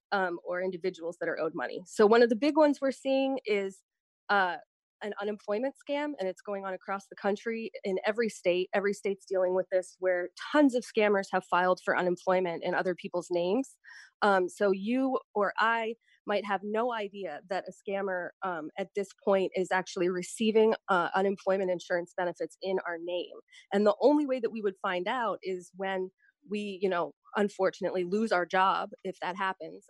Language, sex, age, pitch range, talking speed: English, female, 20-39, 180-210 Hz, 190 wpm